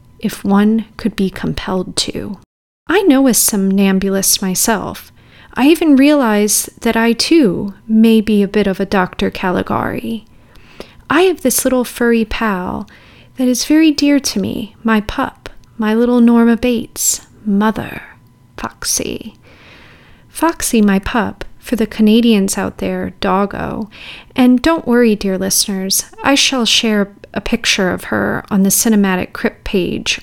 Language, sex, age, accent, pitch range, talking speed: English, female, 30-49, American, 205-255 Hz, 140 wpm